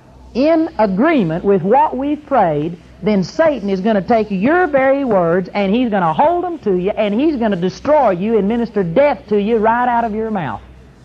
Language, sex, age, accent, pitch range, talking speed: English, male, 40-59, American, 200-285 Hz, 210 wpm